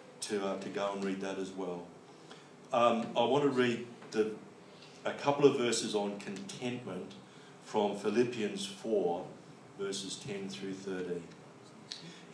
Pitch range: 105-135 Hz